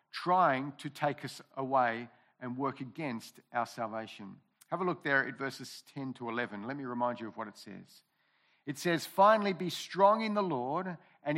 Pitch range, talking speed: 140-185 Hz, 190 wpm